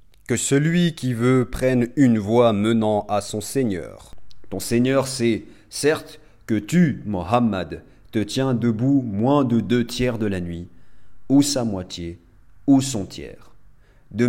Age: 30-49